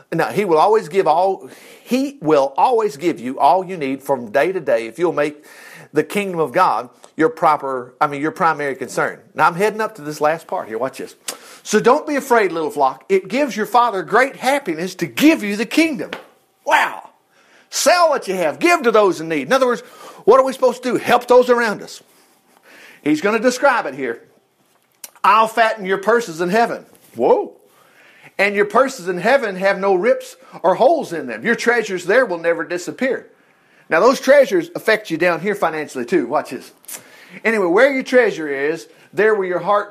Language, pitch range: English, 155-240 Hz